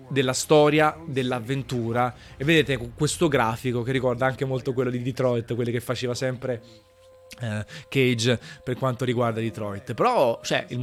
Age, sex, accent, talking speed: 20-39, male, native, 145 wpm